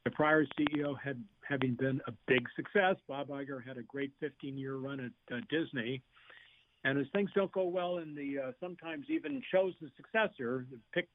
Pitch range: 130-160 Hz